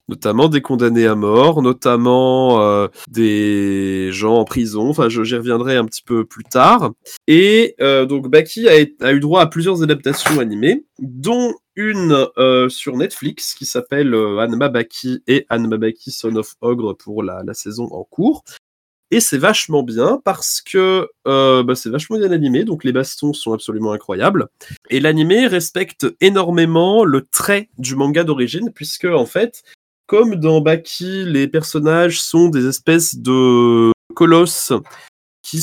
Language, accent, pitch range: French, French, 125-165 Hz